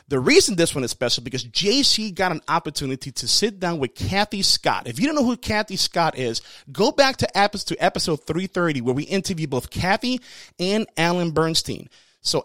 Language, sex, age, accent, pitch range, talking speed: English, male, 30-49, American, 135-190 Hz, 190 wpm